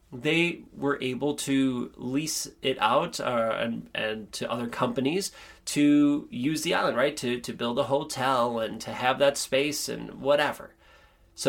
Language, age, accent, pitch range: English, 30-49, American, 120-165 Hz